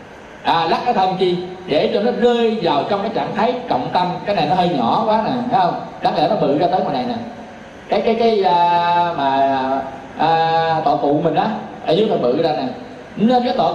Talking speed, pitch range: 240 wpm, 170-235 Hz